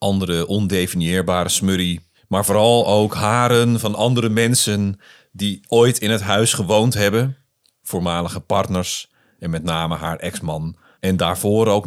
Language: Dutch